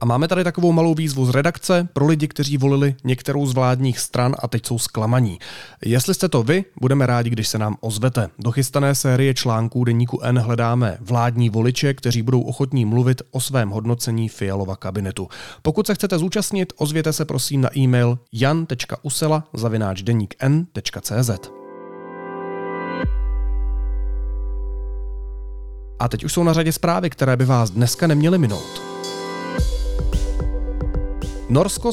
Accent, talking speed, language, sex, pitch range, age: native, 135 wpm, Czech, male, 110-145 Hz, 30-49